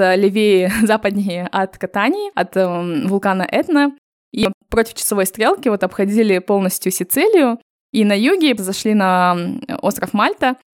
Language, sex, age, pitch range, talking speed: Russian, female, 20-39, 185-225 Hz, 130 wpm